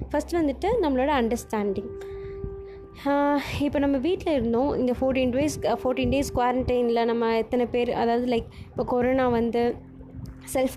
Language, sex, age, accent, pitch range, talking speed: Tamil, female, 20-39, native, 235-280 Hz, 130 wpm